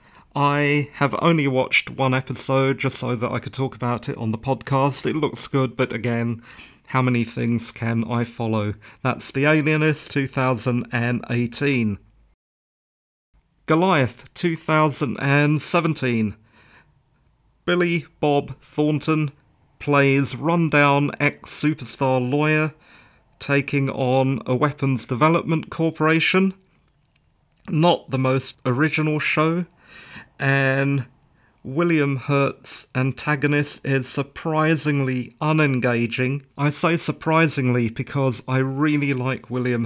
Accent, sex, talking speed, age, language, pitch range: British, male, 100 wpm, 40-59, English, 125-155 Hz